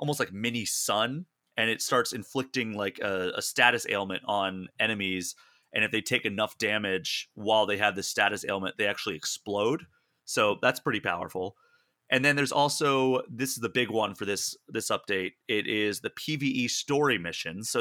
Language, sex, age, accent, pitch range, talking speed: English, male, 30-49, American, 100-125 Hz, 180 wpm